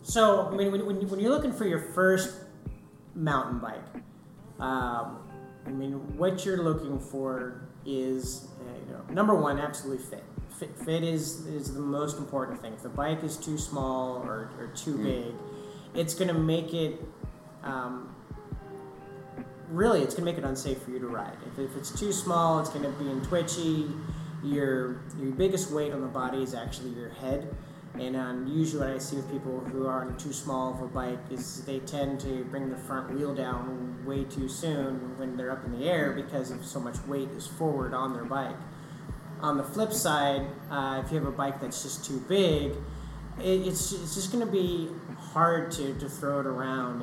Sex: male